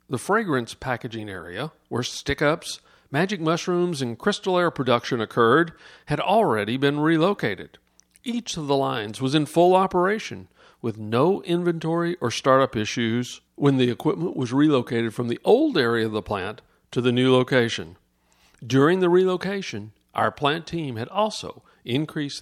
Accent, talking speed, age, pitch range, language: American, 150 wpm, 50-69, 125-175 Hz, English